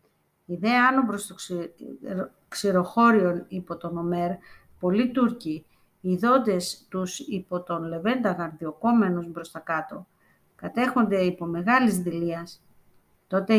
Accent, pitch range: native, 175-220 Hz